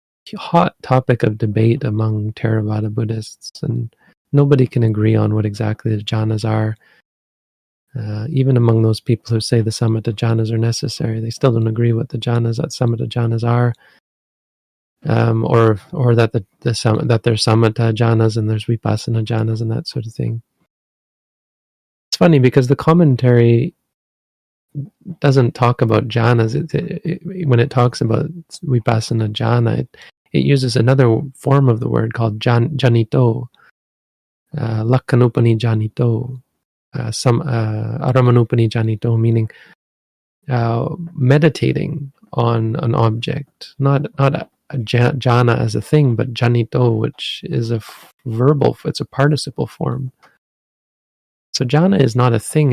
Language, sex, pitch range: English, male, 115-135 Hz